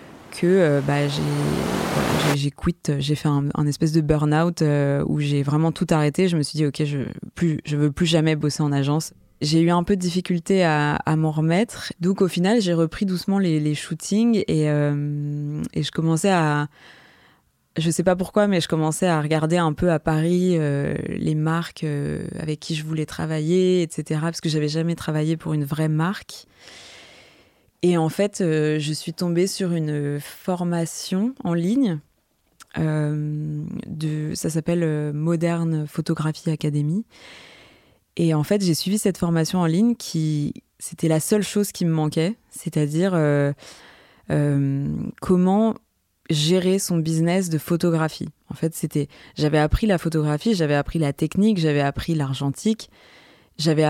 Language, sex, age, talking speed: French, female, 20-39, 170 wpm